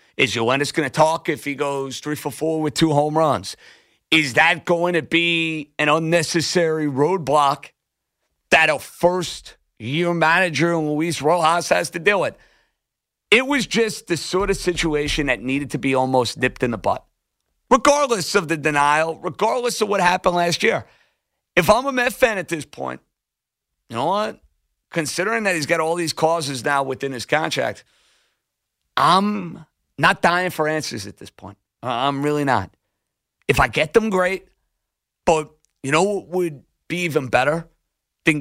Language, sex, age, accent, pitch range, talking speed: English, male, 50-69, American, 140-170 Hz, 165 wpm